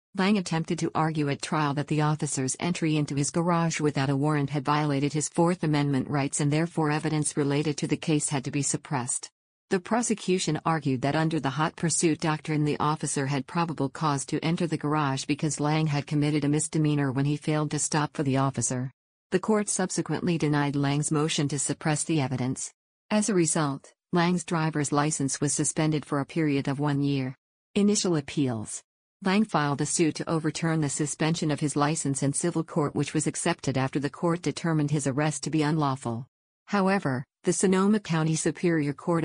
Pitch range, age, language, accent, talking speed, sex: 145-165 Hz, 50-69, English, American, 190 wpm, female